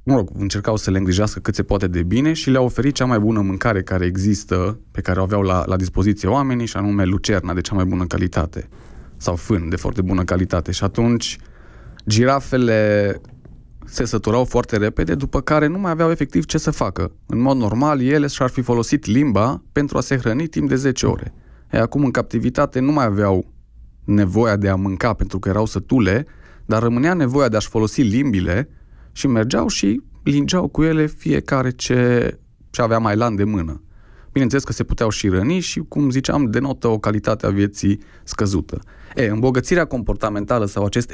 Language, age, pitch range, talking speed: Romanian, 20-39, 100-130 Hz, 185 wpm